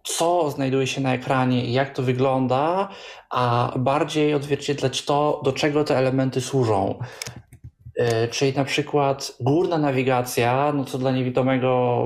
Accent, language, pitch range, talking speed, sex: native, Polish, 130-150 Hz, 130 wpm, male